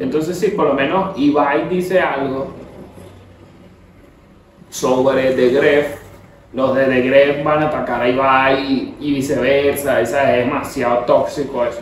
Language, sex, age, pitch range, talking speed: Spanish, male, 30-49, 145-205 Hz, 130 wpm